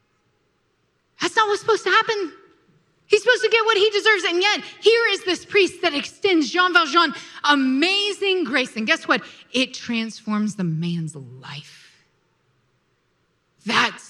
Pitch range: 225-340 Hz